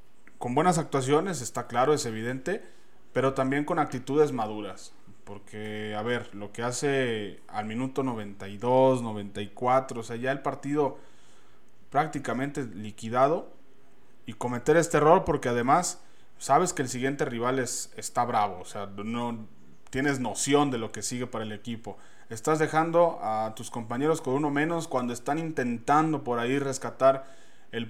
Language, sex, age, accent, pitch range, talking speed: Spanish, male, 20-39, Mexican, 120-145 Hz, 145 wpm